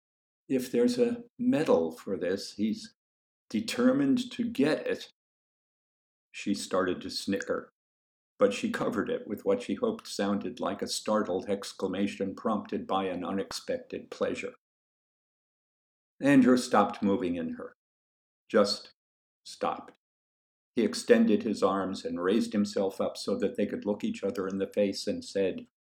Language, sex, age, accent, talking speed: English, male, 50-69, American, 140 wpm